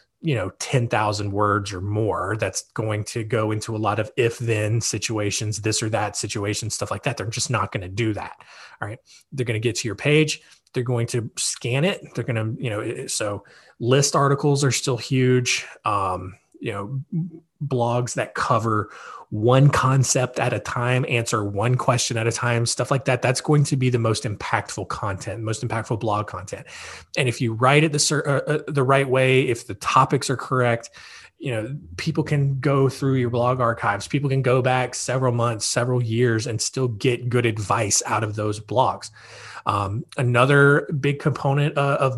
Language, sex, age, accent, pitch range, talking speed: English, male, 20-39, American, 115-135 Hz, 190 wpm